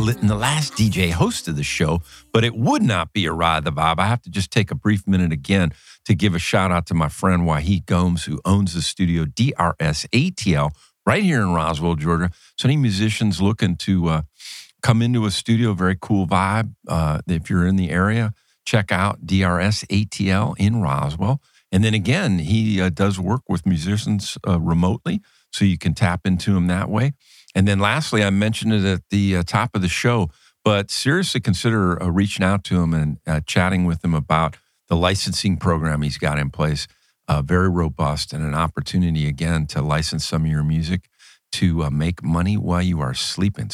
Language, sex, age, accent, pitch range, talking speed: English, male, 50-69, American, 85-110 Hz, 200 wpm